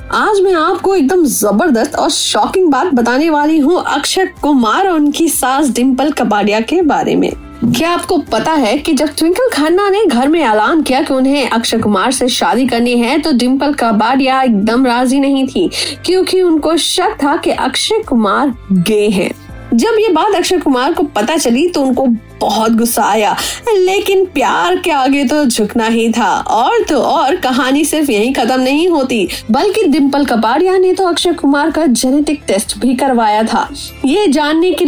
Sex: female